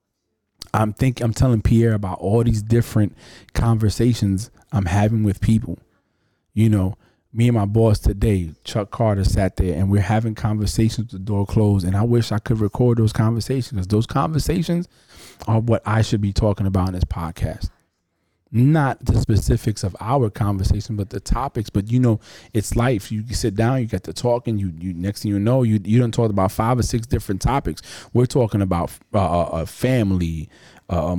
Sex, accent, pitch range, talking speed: male, American, 100-120 Hz, 185 wpm